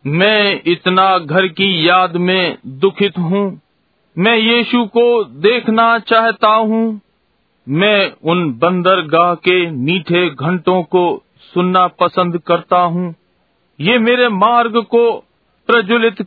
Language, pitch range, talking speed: Hindi, 180-225 Hz, 110 wpm